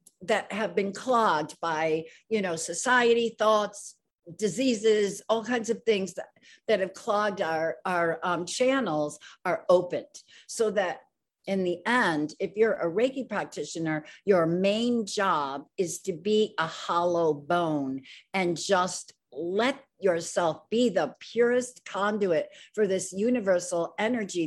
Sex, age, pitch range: female, 50-69, 170-225 Hz